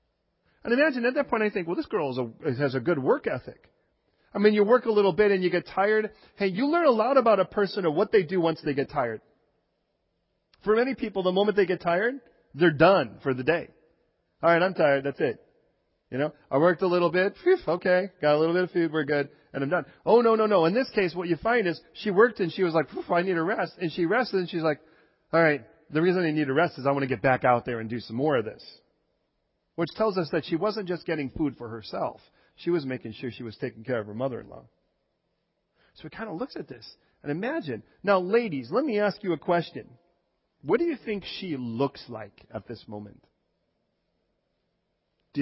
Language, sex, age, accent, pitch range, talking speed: English, male, 40-59, American, 140-195 Hz, 240 wpm